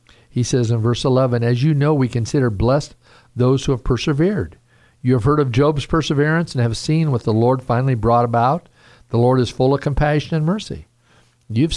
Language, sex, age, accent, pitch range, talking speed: English, male, 50-69, American, 115-145 Hz, 200 wpm